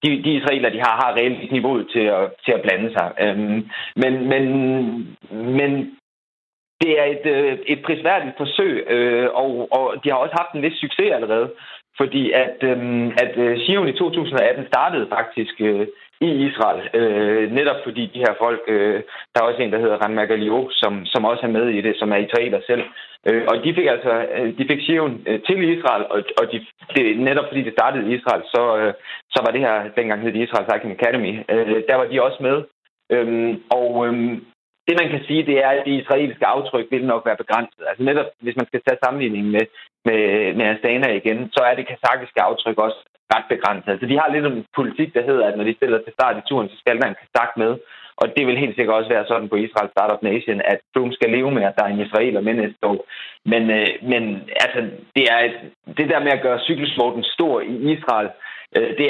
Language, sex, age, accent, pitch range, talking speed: Danish, male, 30-49, native, 115-140 Hz, 215 wpm